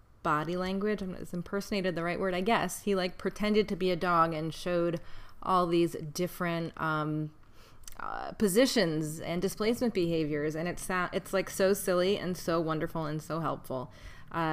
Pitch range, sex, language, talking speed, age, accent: 155-180 Hz, female, English, 180 wpm, 20-39, American